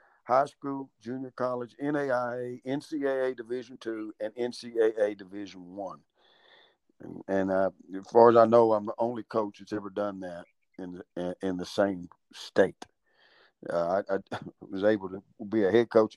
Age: 50-69